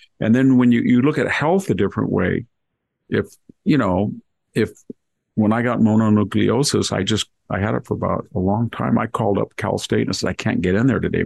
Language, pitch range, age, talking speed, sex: English, 100-120 Hz, 50-69, 225 wpm, male